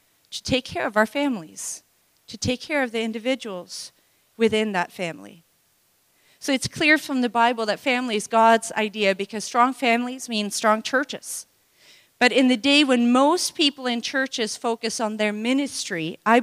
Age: 40-59